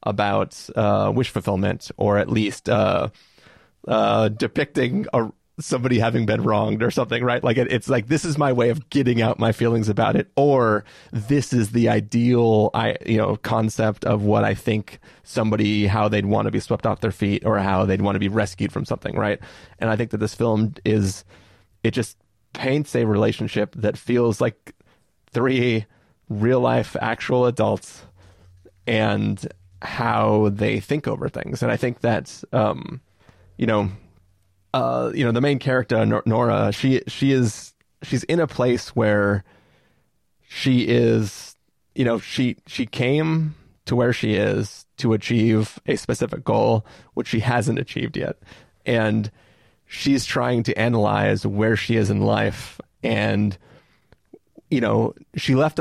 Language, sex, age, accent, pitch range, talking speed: English, male, 30-49, American, 105-125 Hz, 160 wpm